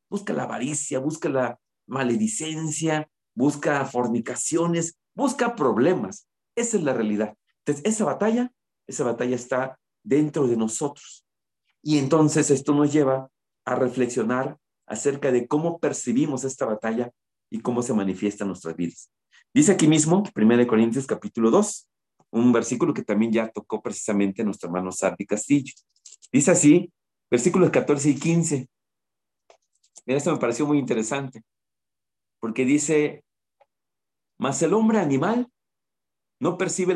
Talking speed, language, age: 135 wpm, Spanish, 40-59